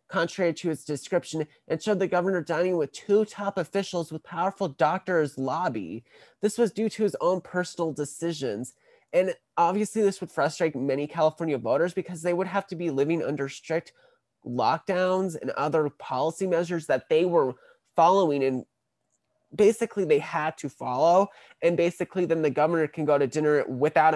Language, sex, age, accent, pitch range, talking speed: English, male, 20-39, American, 140-185 Hz, 165 wpm